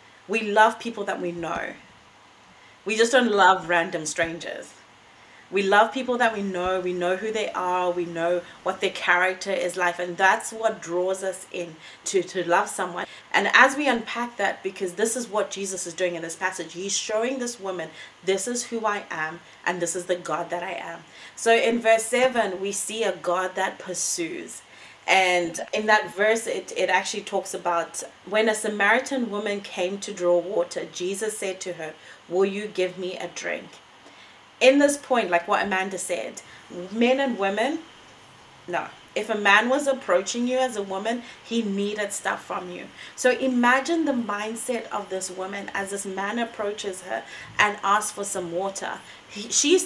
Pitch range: 180-225 Hz